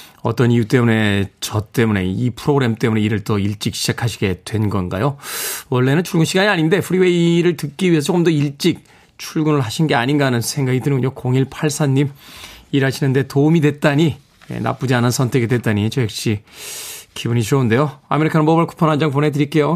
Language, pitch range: Korean, 125-165 Hz